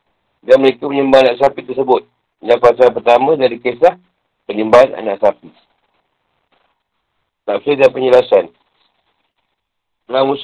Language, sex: Malay, male